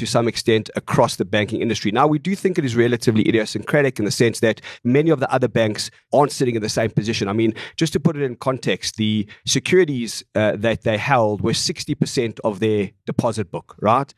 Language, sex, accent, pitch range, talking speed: English, male, South African, 110-135 Hz, 215 wpm